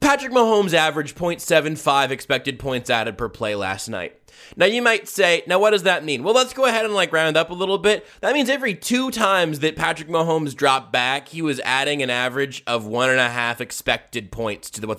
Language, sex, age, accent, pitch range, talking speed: English, male, 20-39, American, 130-195 Hz, 220 wpm